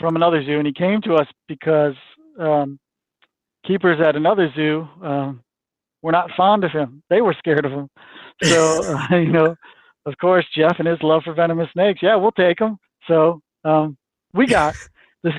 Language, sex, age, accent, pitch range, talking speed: English, male, 50-69, American, 150-180 Hz, 185 wpm